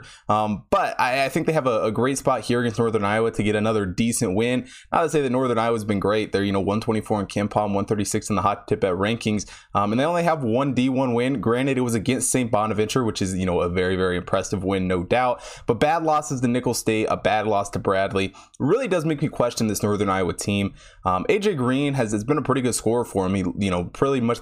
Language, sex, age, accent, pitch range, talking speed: English, male, 20-39, American, 100-125 Hz, 255 wpm